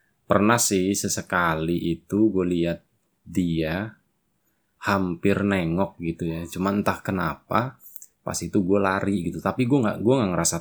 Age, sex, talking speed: 20-39, male, 140 wpm